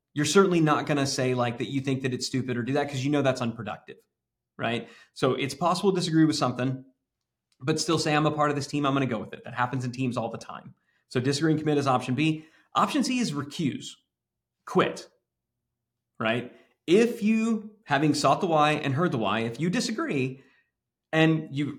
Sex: male